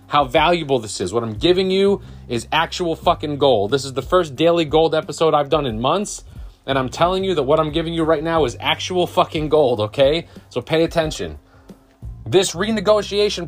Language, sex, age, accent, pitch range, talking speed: English, male, 30-49, American, 130-175 Hz, 195 wpm